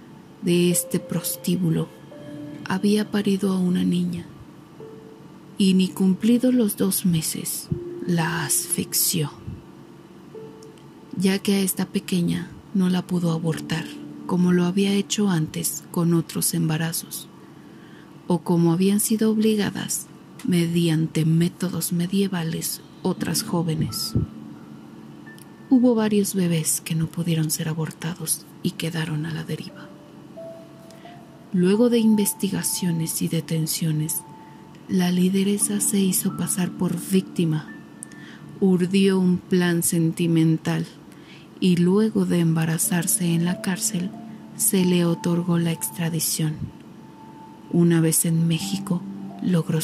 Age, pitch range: 40-59, 160-190 Hz